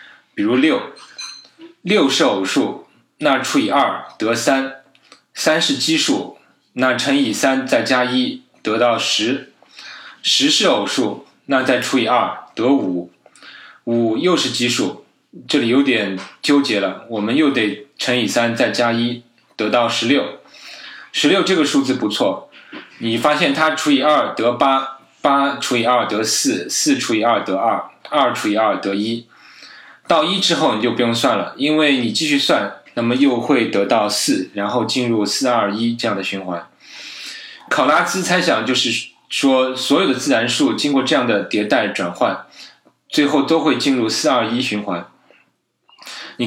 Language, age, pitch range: Chinese, 20-39, 115-140 Hz